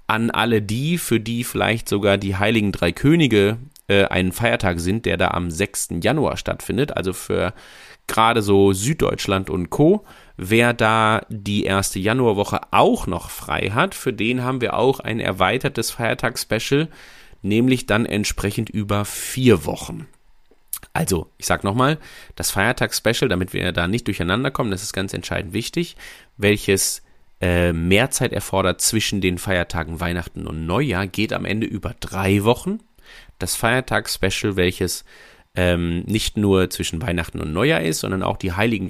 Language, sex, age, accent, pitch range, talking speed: German, male, 30-49, German, 95-125 Hz, 155 wpm